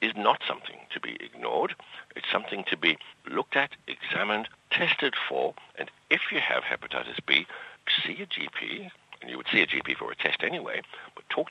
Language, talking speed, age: Kannada, 190 wpm, 60-79